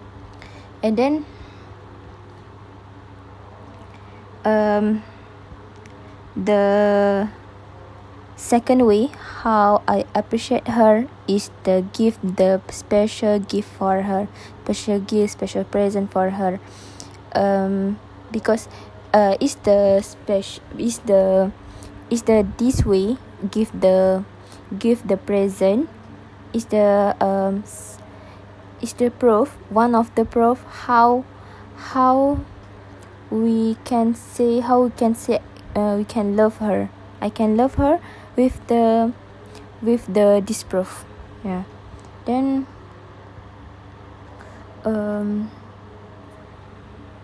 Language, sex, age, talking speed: Malay, female, 20-39, 100 wpm